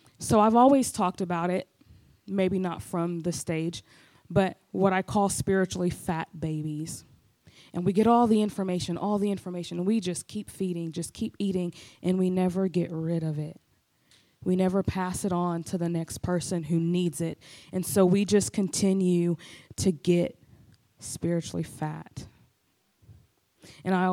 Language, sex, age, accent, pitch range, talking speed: English, female, 20-39, American, 165-200 Hz, 160 wpm